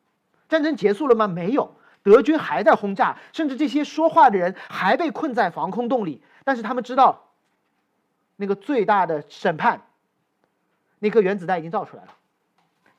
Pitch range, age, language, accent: 190-270 Hz, 40-59, Chinese, native